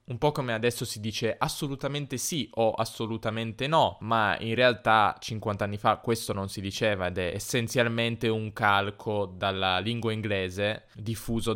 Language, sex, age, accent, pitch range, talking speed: Italian, male, 20-39, native, 95-120 Hz, 155 wpm